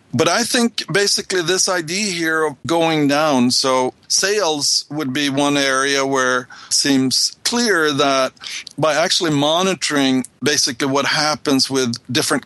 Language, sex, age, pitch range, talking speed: English, male, 50-69, 130-165 Hz, 140 wpm